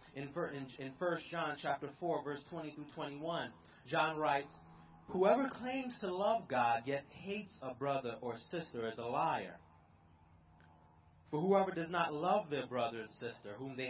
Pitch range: 120-180 Hz